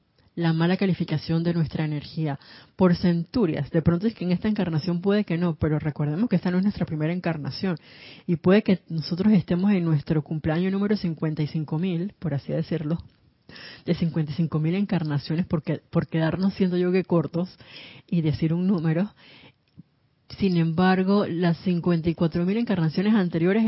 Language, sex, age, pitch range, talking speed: Spanish, female, 30-49, 155-180 Hz, 150 wpm